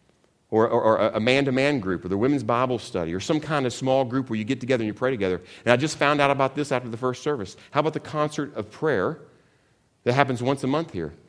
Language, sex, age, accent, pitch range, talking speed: English, male, 40-59, American, 110-145 Hz, 255 wpm